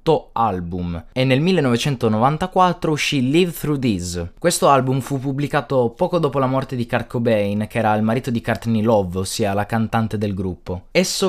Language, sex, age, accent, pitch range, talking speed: Italian, male, 20-39, native, 115-150 Hz, 170 wpm